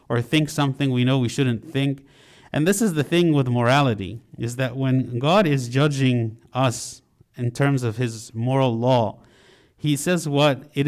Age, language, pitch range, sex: 50-69, English, 125-150 Hz, male